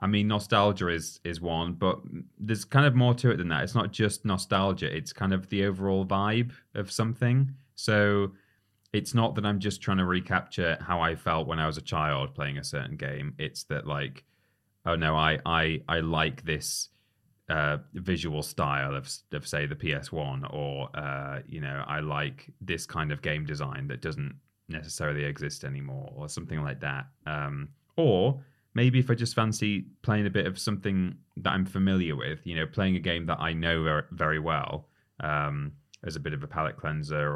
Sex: male